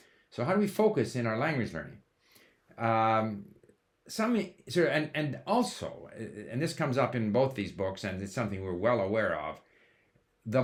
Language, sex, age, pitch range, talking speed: English, male, 60-79, 100-135 Hz, 175 wpm